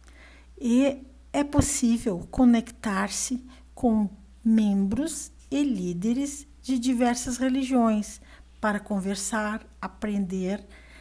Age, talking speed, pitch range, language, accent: 60-79, 75 wpm, 180-240 Hz, Portuguese, Brazilian